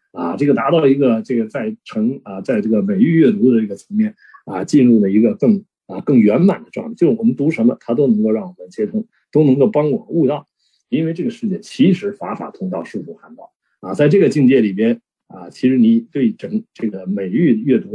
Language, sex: Chinese, male